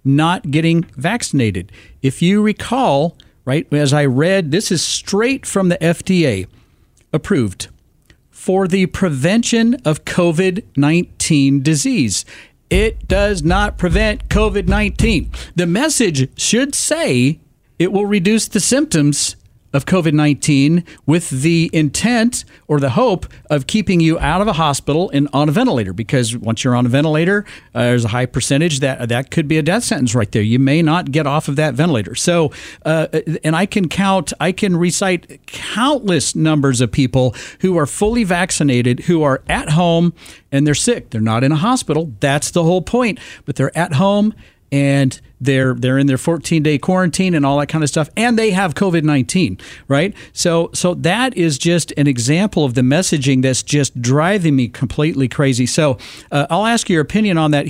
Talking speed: 170 wpm